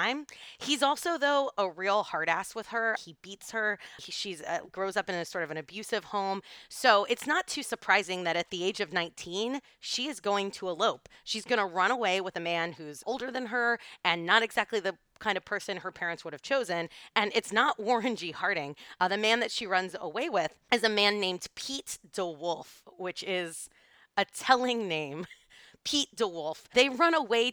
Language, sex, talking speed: English, female, 200 wpm